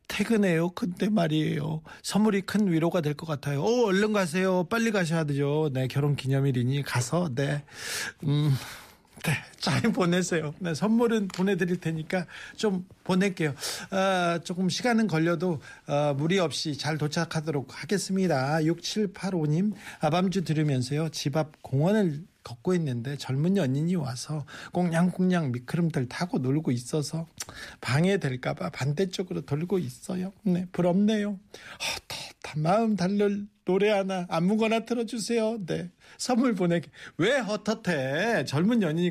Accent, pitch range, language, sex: native, 155-200 Hz, Korean, male